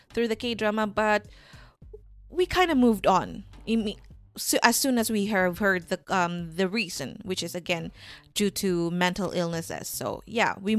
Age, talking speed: 20-39, 160 wpm